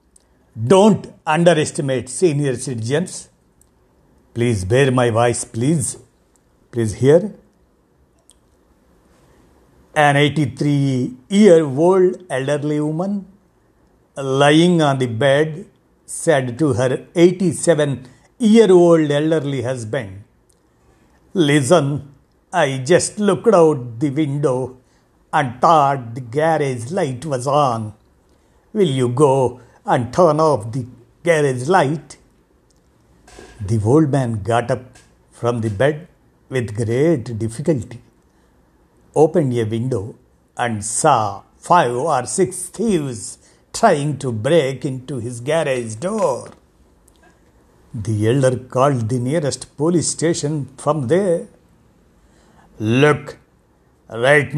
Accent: native